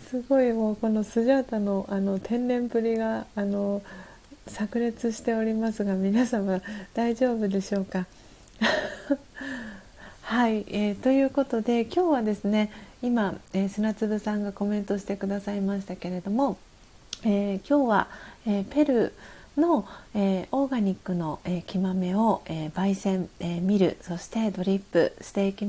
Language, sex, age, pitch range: Japanese, female, 40-59, 190-235 Hz